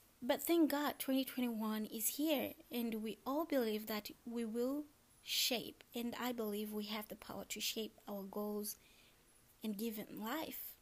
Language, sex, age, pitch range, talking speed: English, female, 20-39, 215-270 Hz, 155 wpm